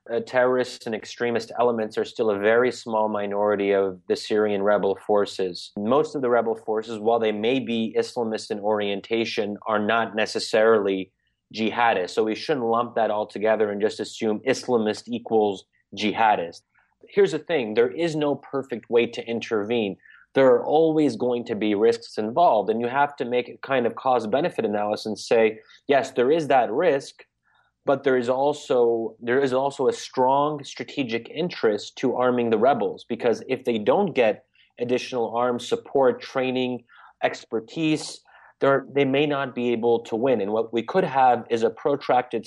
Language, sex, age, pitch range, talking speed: English, male, 30-49, 110-130 Hz, 170 wpm